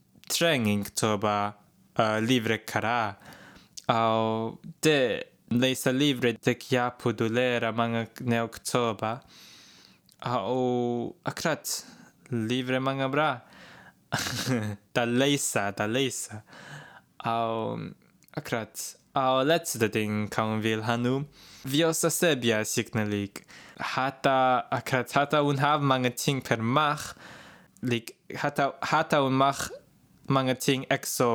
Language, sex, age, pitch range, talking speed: English, male, 20-39, 115-140 Hz, 100 wpm